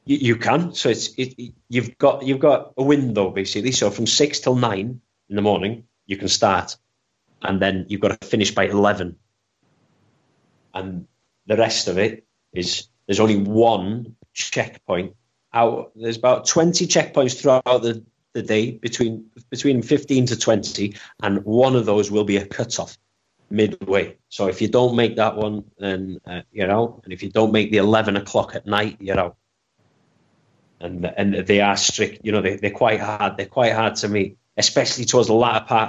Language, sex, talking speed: English, male, 180 wpm